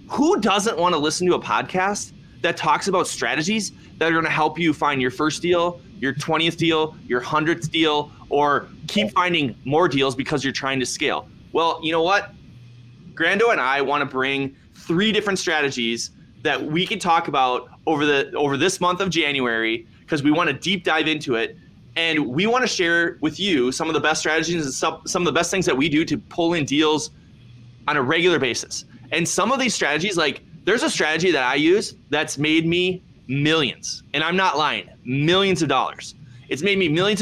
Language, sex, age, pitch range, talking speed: English, male, 20-39, 135-185 Hz, 205 wpm